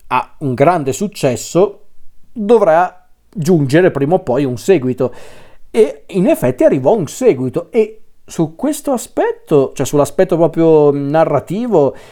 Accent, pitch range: native, 130-180 Hz